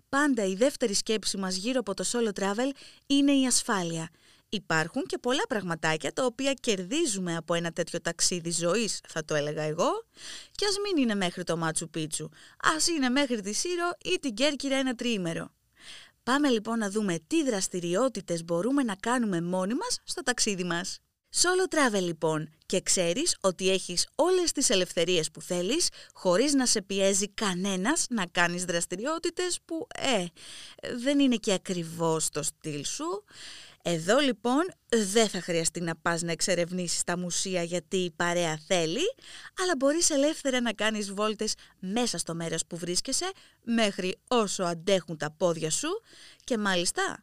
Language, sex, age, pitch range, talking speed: Greek, female, 20-39, 175-270 Hz, 155 wpm